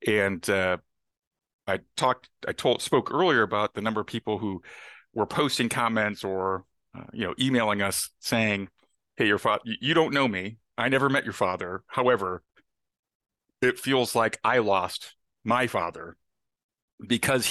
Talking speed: 155 wpm